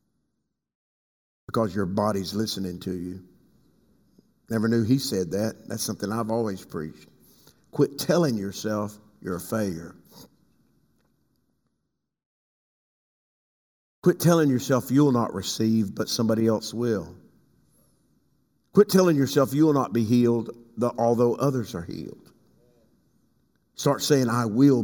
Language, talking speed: English, 120 wpm